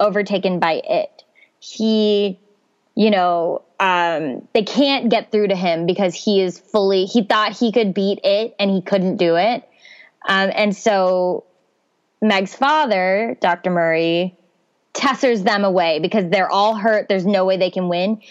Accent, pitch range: American, 185-220 Hz